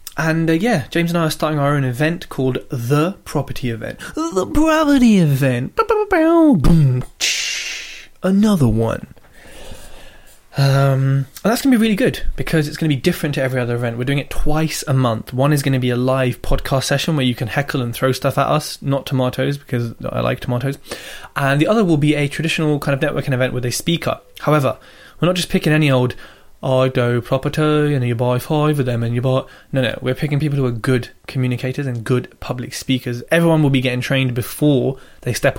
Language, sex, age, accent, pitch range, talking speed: English, male, 20-39, British, 125-160 Hz, 215 wpm